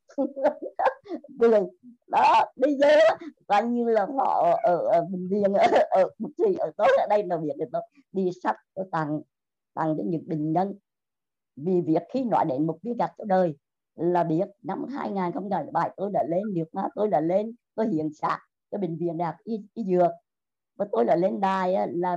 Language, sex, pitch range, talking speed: Vietnamese, male, 170-240 Hz, 190 wpm